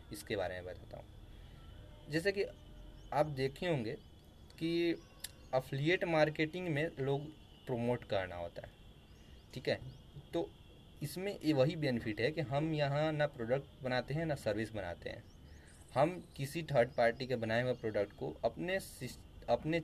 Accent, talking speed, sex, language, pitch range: native, 145 wpm, male, Hindi, 110-145 Hz